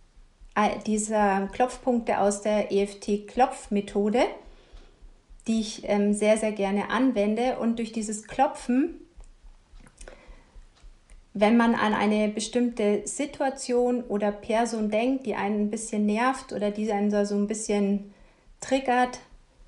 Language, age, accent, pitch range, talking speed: German, 40-59, German, 205-240 Hz, 115 wpm